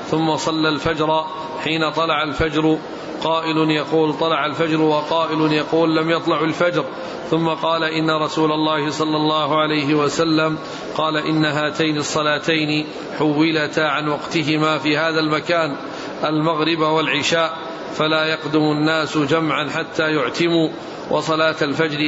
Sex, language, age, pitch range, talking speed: male, Arabic, 40-59, 150-160 Hz, 120 wpm